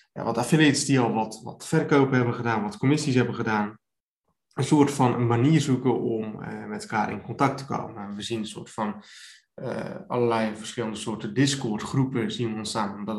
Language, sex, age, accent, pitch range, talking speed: Dutch, male, 20-39, Dutch, 115-145 Hz, 195 wpm